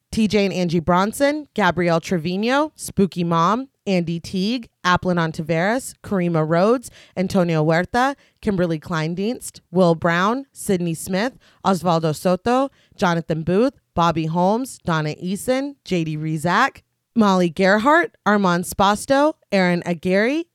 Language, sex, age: English, female, 30-49